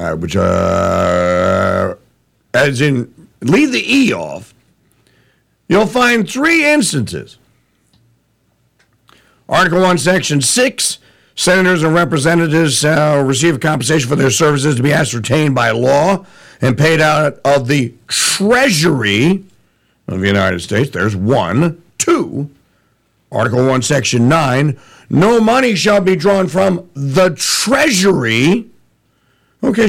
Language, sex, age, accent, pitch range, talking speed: English, male, 50-69, American, 145-230 Hz, 115 wpm